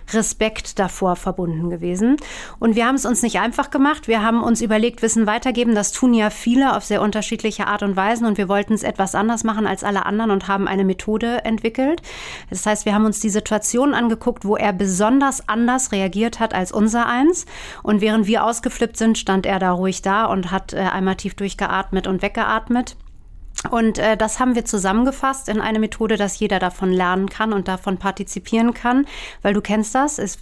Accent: German